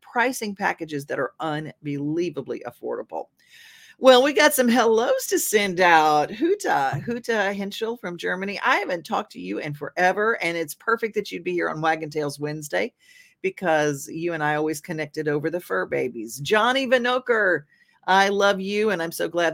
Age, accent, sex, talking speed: 40-59, American, female, 170 wpm